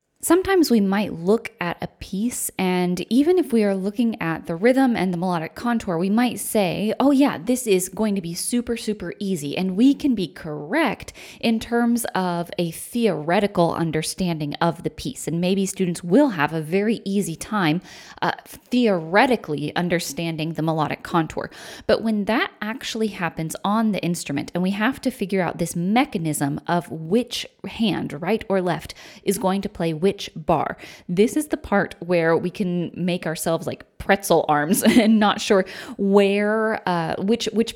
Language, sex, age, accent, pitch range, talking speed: English, female, 20-39, American, 170-225 Hz, 175 wpm